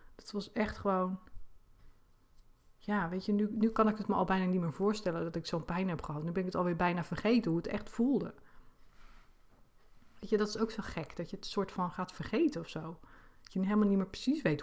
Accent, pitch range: Dutch, 170-210 Hz